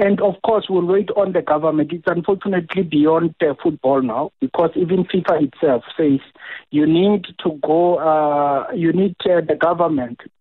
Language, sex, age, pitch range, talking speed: English, male, 60-79, 145-175 Hz, 165 wpm